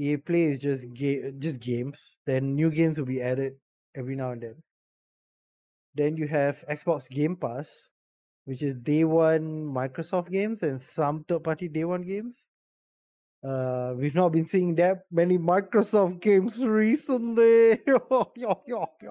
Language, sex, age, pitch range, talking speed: English, male, 20-39, 135-180 Hz, 140 wpm